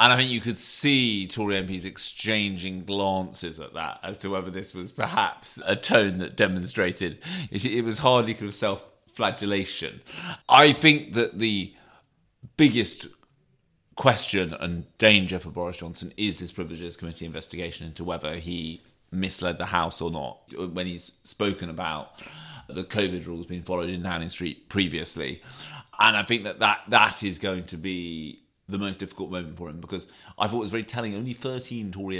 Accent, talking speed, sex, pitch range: British, 170 wpm, male, 90-105 Hz